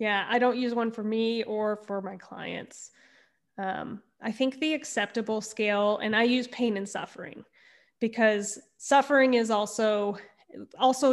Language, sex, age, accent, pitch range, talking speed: English, female, 20-39, American, 210-260 Hz, 150 wpm